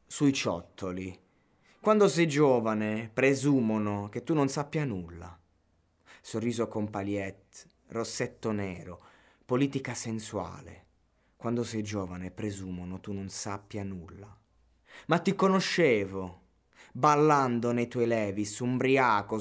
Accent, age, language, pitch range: native, 20-39, Italian, 90-115 Hz